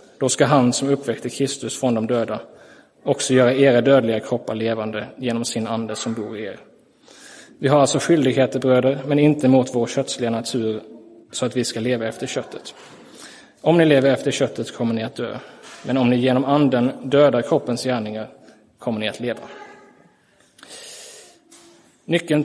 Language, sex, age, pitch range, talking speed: Swedish, male, 20-39, 115-135 Hz, 165 wpm